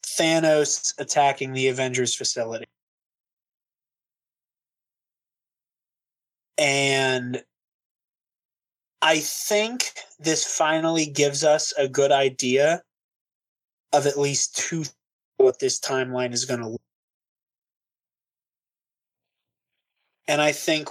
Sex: male